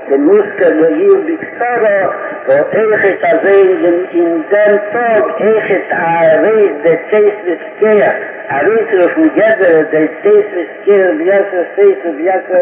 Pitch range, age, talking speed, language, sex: 180-230 Hz, 60-79, 95 wpm, Hebrew, male